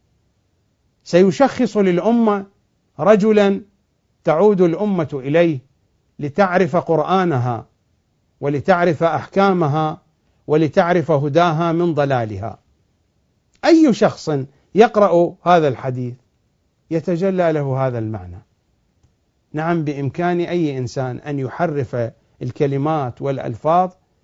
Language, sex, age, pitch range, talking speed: English, male, 50-69, 125-185 Hz, 75 wpm